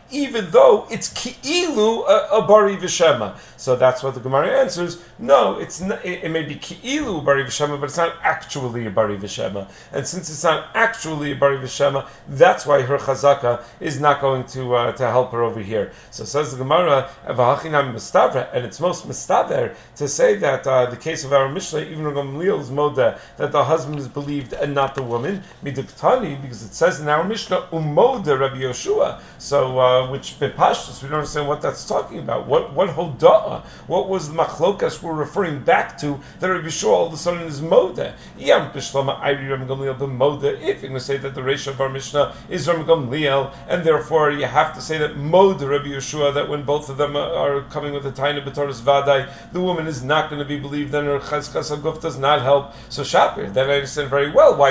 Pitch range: 135-170 Hz